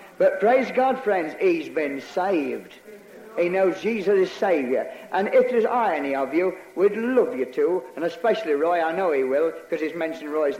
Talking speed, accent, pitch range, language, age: 185 wpm, British, 180-285 Hz, English, 60-79